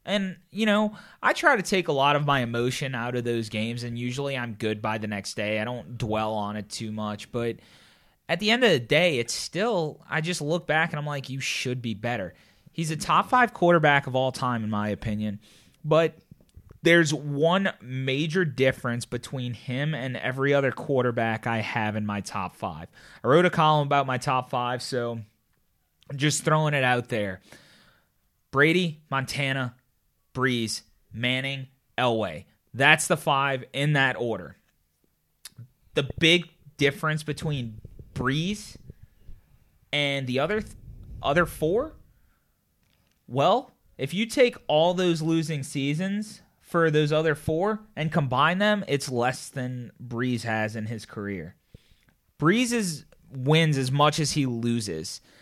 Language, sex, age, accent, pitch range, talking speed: English, male, 30-49, American, 120-160 Hz, 160 wpm